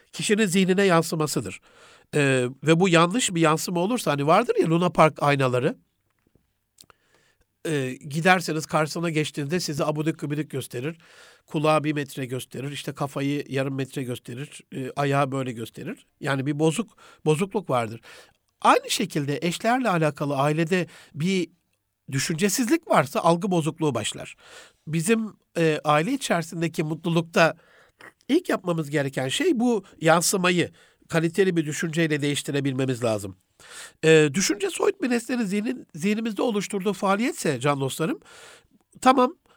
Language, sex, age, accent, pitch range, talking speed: Turkish, male, 60-79, native, 145-210 Hz, 125 wpm